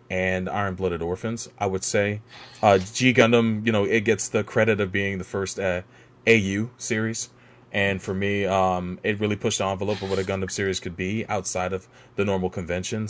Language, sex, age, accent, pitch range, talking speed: English, male, 30-49, American, 95-110 Hz, 195 wpm